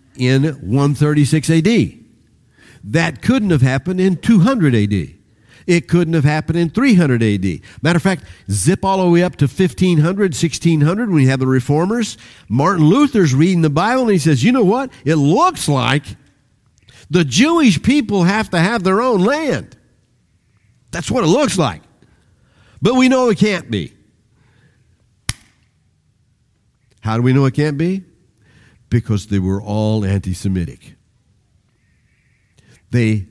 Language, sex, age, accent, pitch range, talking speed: English, male, 50-69, American, 110-175 Hz, 140 wpm